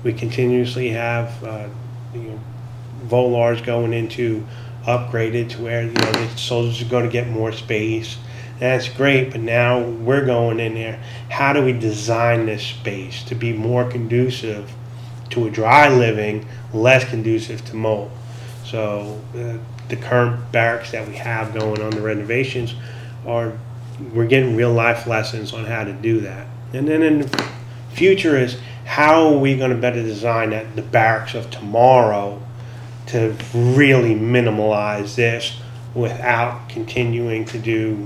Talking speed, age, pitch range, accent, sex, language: 145 wpm, 30-49, 110-120 Hz, American, male, English